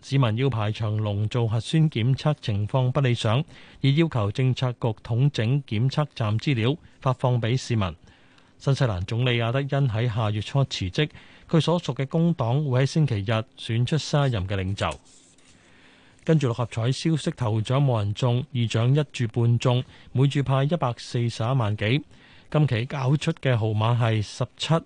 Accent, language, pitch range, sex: native, Chinese, 115-145 Hz, male